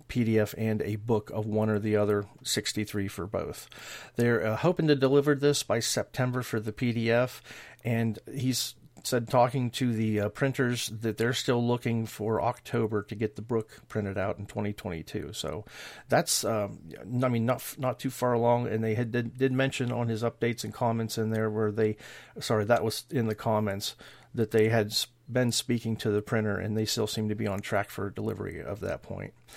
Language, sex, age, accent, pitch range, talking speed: English, male, 40-59, American, 110-125 Hz, 195 wpm